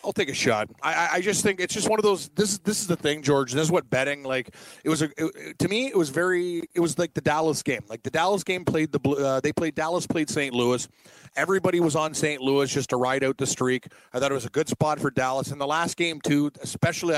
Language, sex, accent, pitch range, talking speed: English, male, American, 135-155 Hz, 275 wpm